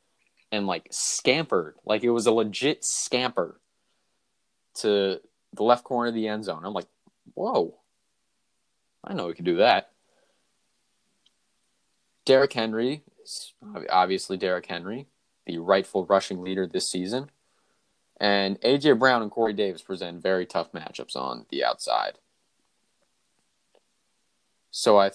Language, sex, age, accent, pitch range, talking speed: English, male, 20-39, American, 95-120 Hz, 125 wpm